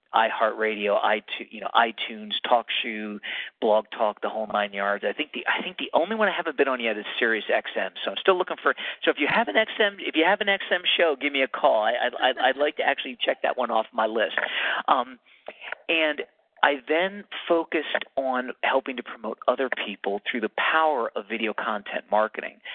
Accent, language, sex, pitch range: American, English, male, 105-155 Hz